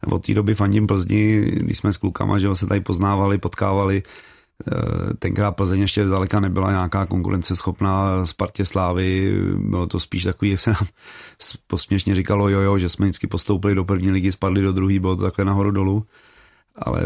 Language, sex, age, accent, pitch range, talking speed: Czech, male, 30-49, native, 95-105 Hz, 185 wpm